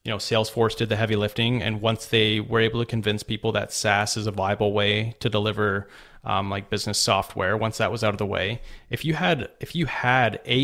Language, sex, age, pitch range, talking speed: English, male, 30-49, 105-120 Hz, 230 wpm